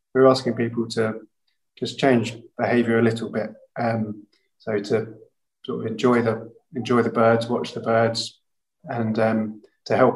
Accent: British